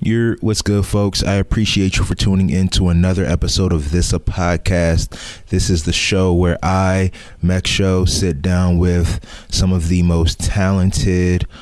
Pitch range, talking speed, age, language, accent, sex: 85-95 Hz, 170 wpm, 20-39, English, American, male